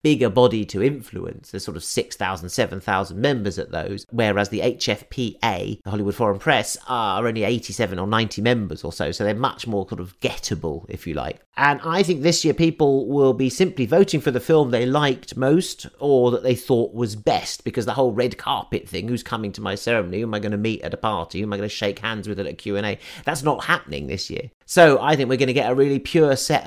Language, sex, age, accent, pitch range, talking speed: English, male, 40-59, British, 105-145 Hz, 240 wpm